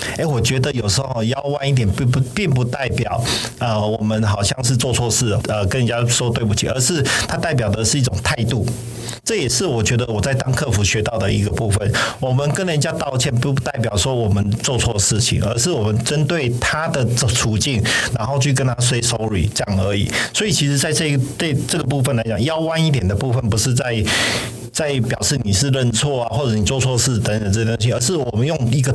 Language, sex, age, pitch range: Chinese, male, 50-69, 110-135 Hz